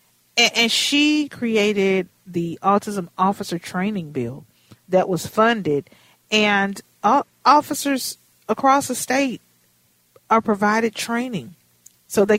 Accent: American